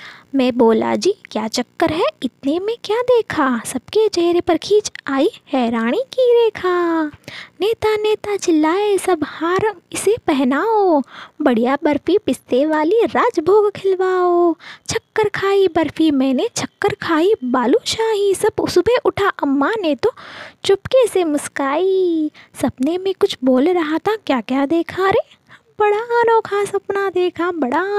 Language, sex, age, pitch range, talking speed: Hindi, female, 20-39, 290-420 Hz, 135 wpm